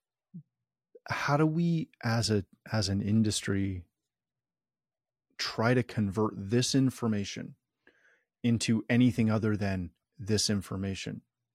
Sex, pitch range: male, 100-120 Hz